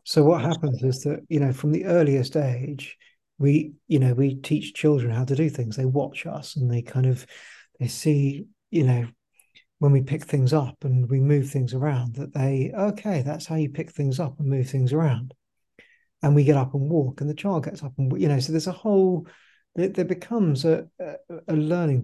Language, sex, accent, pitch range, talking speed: English, male, British, 135-160 Hz, 210 wpm